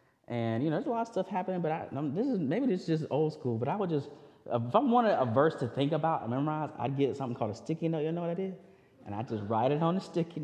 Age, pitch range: 30-49, 120-185 Hz